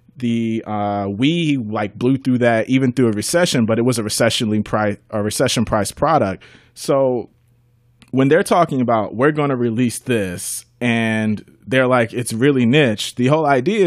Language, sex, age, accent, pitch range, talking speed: English, male, 30-49, American, 110-130 Hz, 175 wpm